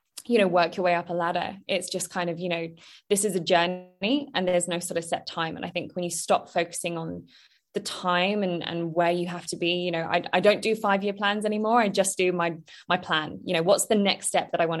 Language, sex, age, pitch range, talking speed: English, female, 20-39, 170-200 Hz, 270 wpm